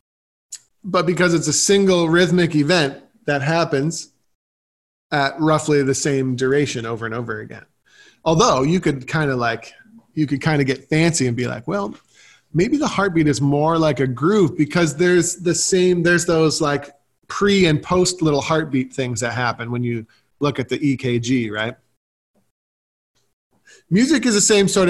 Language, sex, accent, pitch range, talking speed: English, male, American, 145-185 Hz, 165 wpm